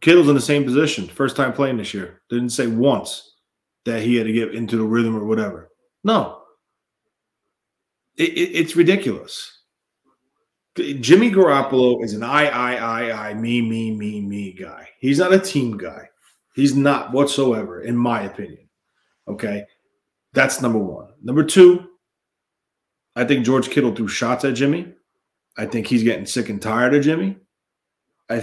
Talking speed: 155 wpm